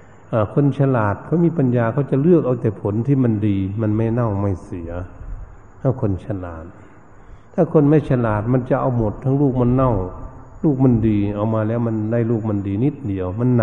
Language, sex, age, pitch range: Thai, male, 60-79, 95-120 Hz